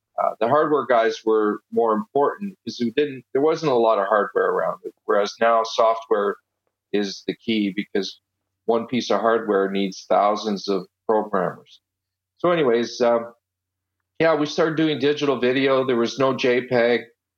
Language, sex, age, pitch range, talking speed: English, male, 40-59, 110-130 Hz, 160 wpm